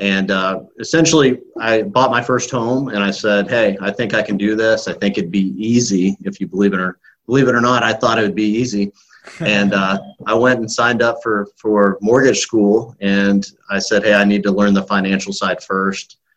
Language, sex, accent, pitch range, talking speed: English, male, American, 95-105 Hz, 225 wpm